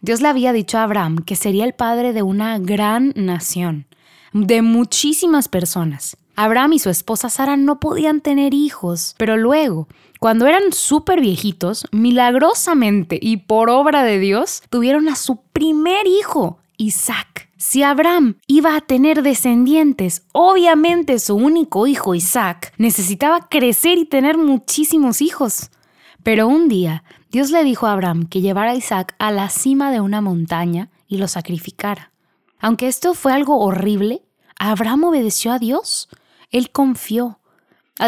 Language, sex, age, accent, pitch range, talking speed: Spanish, female, 20-39, Mexican, 200-285 Hz, 150 wpm